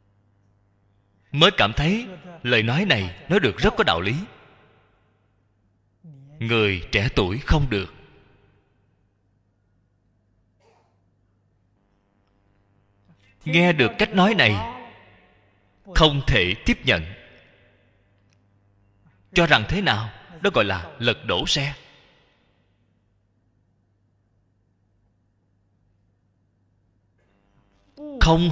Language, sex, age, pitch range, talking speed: Vietnamese, male, 20-39, 100-135 Hz, 80 wpm